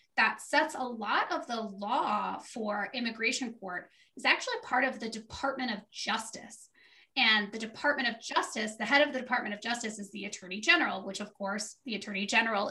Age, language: 20-39, English